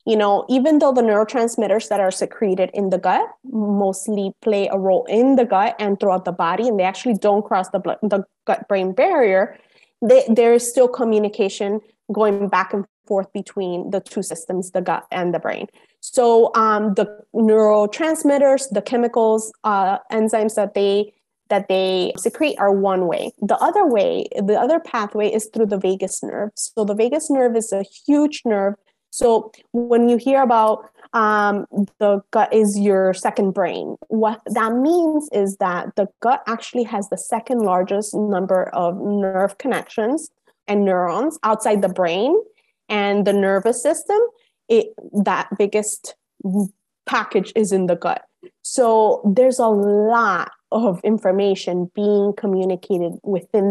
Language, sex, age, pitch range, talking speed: English, female, 20-39, 195-235 Hz, 150 wpm